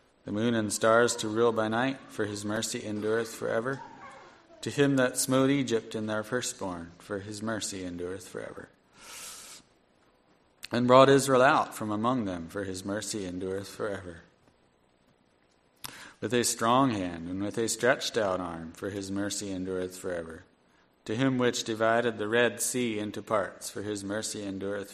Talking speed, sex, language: 160 wpm, male, English